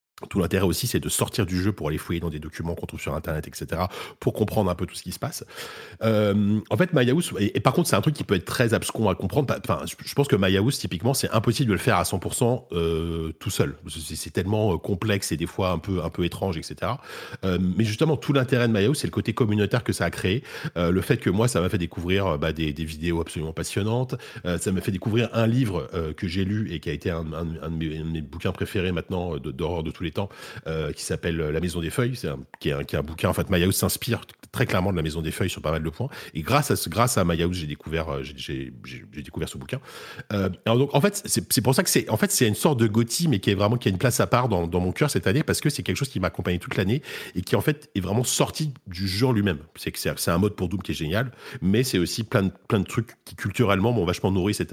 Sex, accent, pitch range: male, French, 85-115 Hz